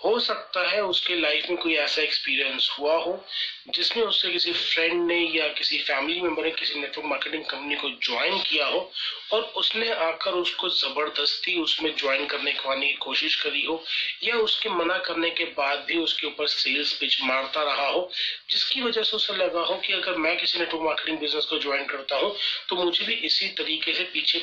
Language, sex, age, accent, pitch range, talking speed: Hindi, male, 30-49, native, 155-210 Hz, 200 wpm